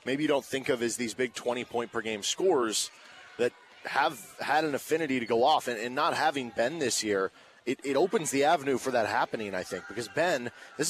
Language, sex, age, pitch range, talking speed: English, male, 30-49, 120-145 Hz, 210 wpm